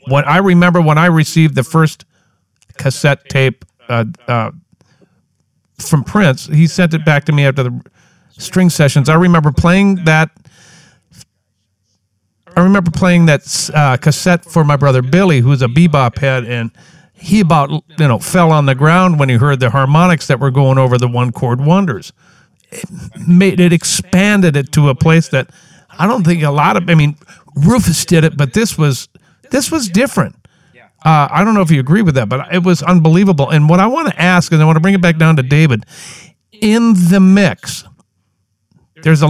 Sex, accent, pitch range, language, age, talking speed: male, American, 135-175 Hz, English, 50-69, 190 wpm